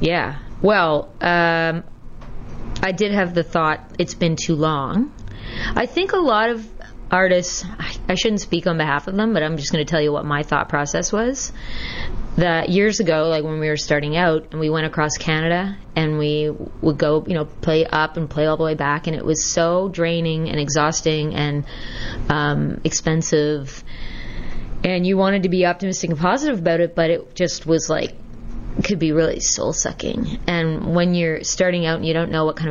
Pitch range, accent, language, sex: 150-185 Hz, American, English, female